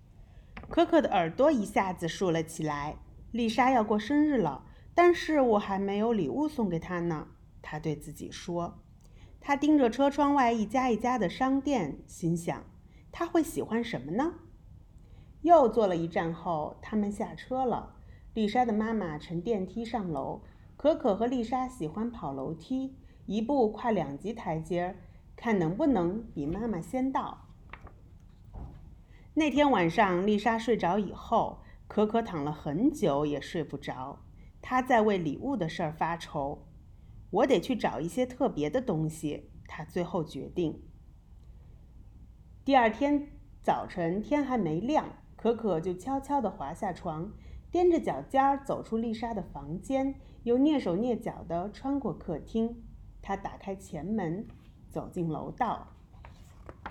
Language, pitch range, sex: English, 170-260 Hz, female